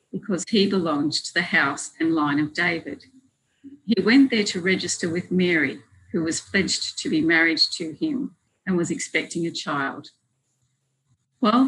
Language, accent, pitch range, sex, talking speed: English, Australian, 155-210 Hz, female, 160 wpm